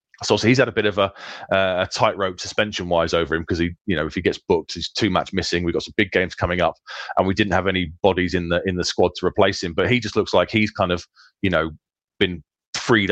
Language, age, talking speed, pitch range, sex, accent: English, 30-49, 270 wpm, 90-105 Hz, male, British